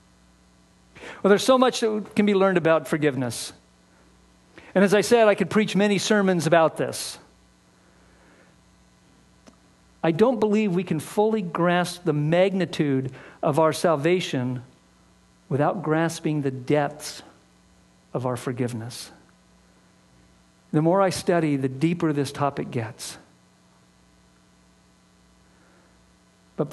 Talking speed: 110 wpm